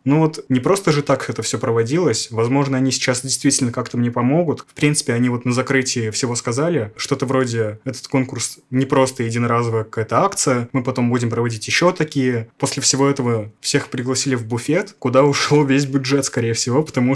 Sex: male